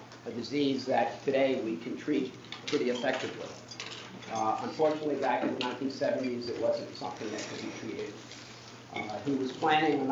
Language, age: English, 50-69